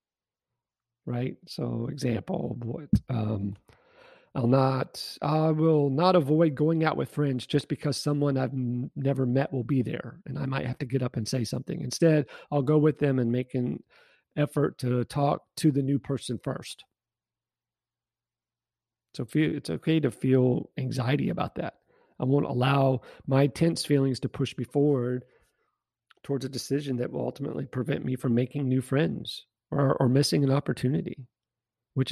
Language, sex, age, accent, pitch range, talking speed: English, male, 40-59, American, 125-150 Hz, 165 wpm